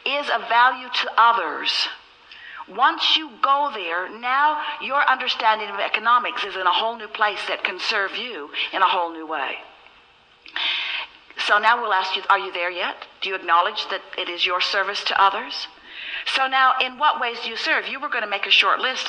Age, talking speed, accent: 60-79, 200 wpm, American